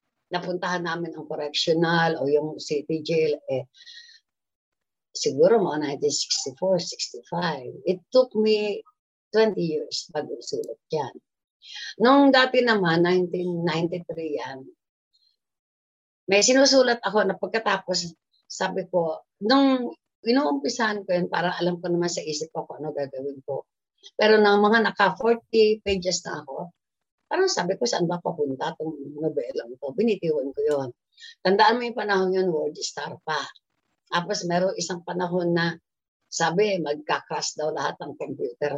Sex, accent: female, native